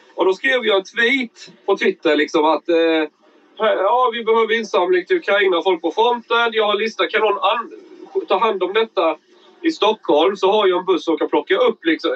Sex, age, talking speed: male, 30-49, 200 wpm